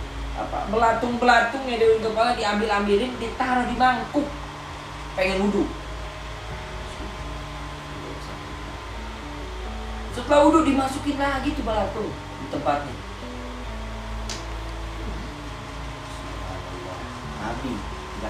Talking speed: 60 wpm